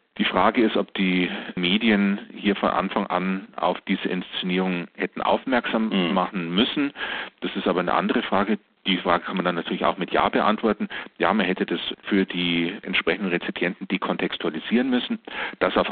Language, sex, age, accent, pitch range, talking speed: German, male, 40-59, German, 90-110 Hz, 175 wpm